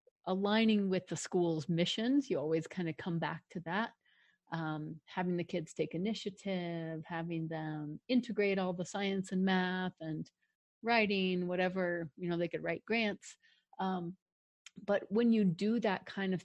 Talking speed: 160 wpm